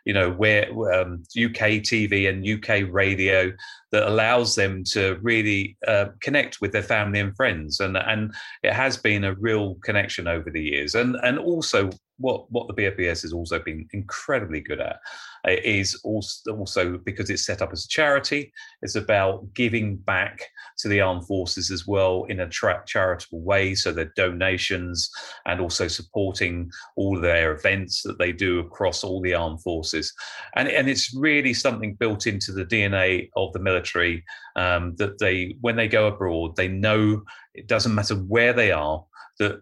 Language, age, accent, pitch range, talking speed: English, 30-49, British, 90-105 Hz, 175 wpm